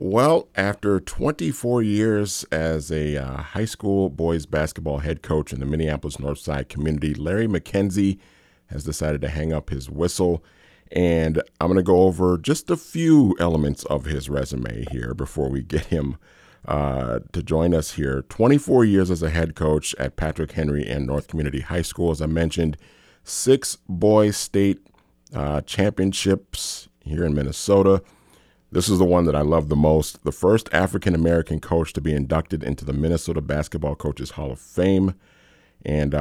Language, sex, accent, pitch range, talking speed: English, male, American, 70-95 Hz, 165 wpm